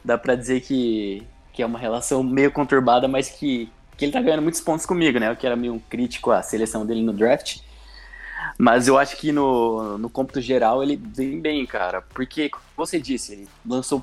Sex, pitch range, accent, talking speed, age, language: male, 120-150 Hz, Brazilian, 210 wpm, 20-39, Portuguese